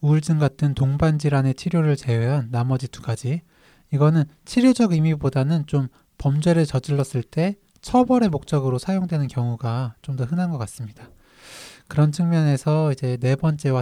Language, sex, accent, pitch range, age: Korean, male, native, 130-165 Hz, 20-39